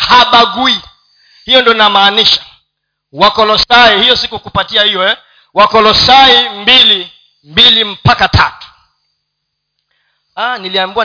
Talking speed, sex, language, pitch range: 80 wpm, male, Swahili, 155-215 Hz